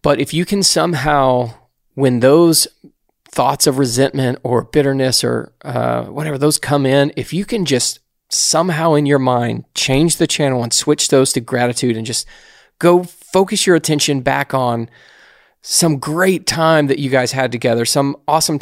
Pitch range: 125-150 Hz